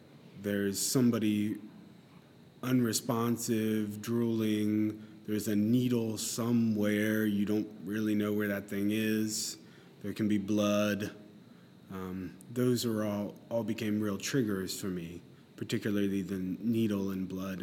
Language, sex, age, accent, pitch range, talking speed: English, male, 30-49, American, 95-110 Hz, 120 wpm